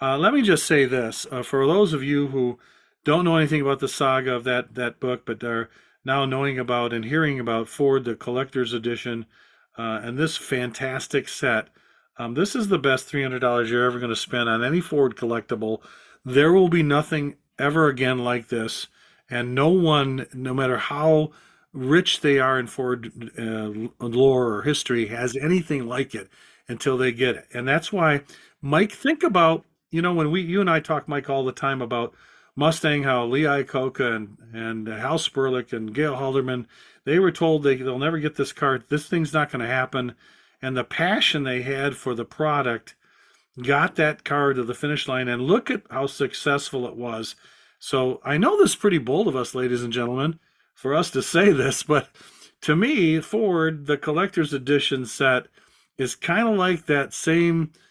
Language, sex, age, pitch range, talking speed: English, male, 40-59, 125-155 Hz, 190 wpm